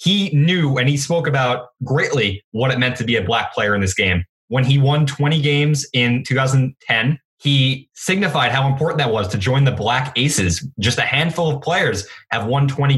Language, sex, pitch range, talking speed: English, male, 120-145 Hz, 205 wpm